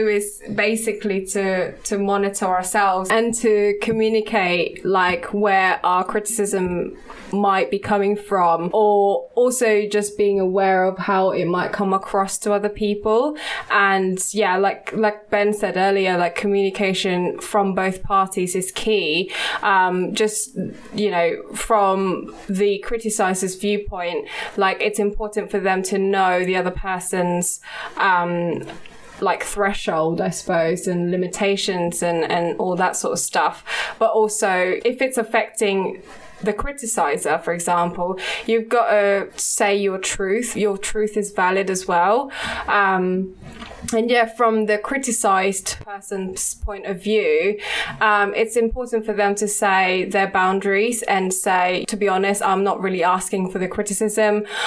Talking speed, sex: 140 wpm, female